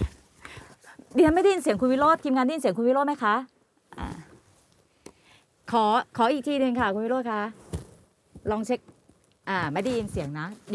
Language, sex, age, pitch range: Thai, female, 30-49, 210-265 Hz